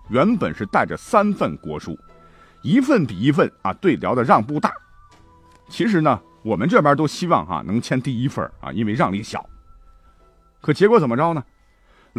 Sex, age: male, 50-69